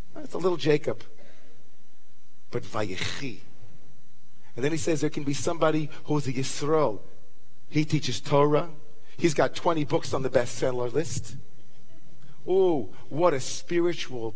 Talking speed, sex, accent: 135 wpm, male, American